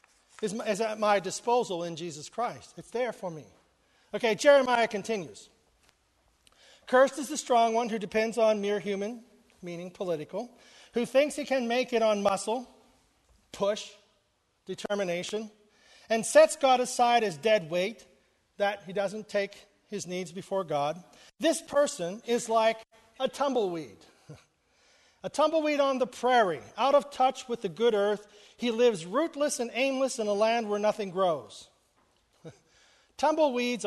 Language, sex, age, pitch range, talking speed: English, male, 40-59, 200-245 Hz, 145 wpm